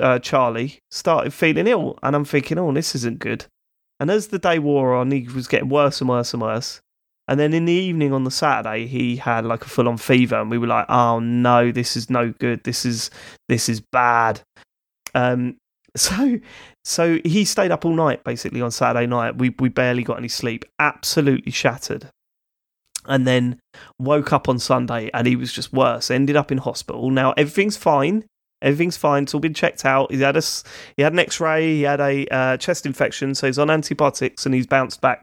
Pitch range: 120-145 Hz